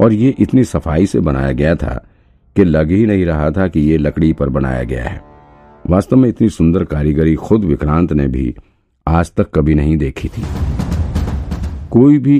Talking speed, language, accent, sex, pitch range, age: 180 wpm, Hindi, native, male, 70-90 Hz, 50-69